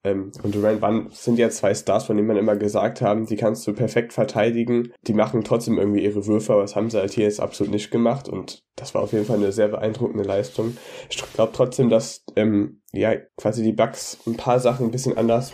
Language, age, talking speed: German, 10-29, 230 wpm